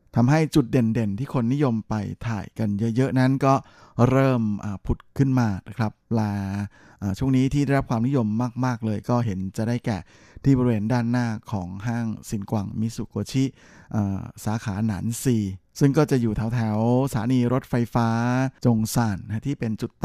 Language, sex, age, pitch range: Thai, male, 20-39, 105-125 Hz